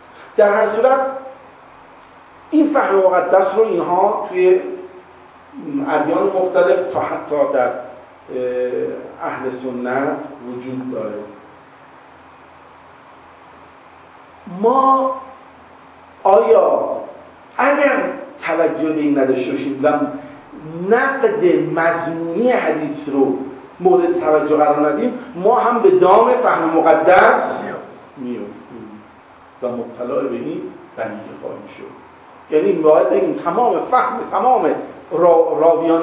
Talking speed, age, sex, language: 85 wpm, 50-69, male, Persian